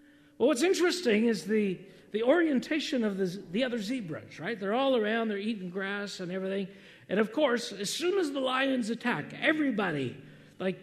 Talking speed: 175 wpm